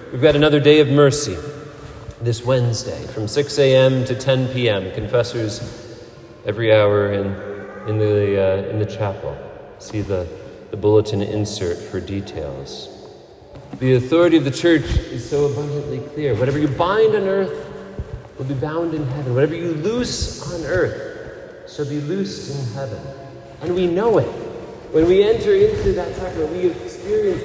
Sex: male